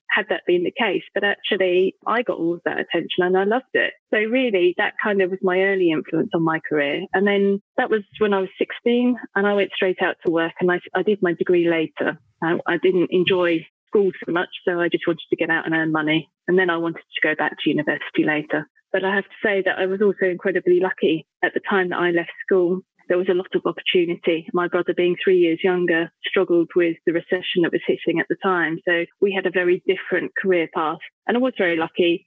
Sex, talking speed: female, 245 wpm